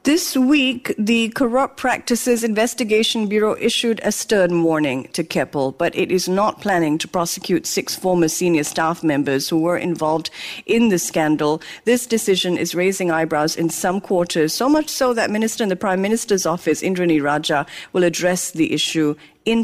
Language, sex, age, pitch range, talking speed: English, female, 50-69, 175-245 Hz, 170 wpm